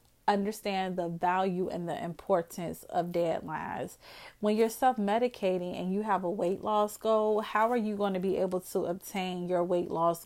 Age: 30-49